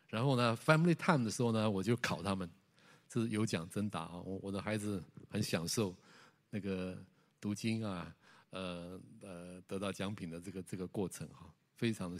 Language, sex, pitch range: Chinese, male, 95-125 Hz